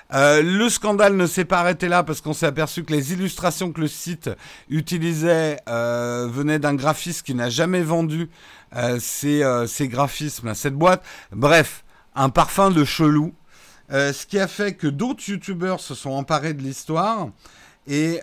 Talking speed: 175 wpm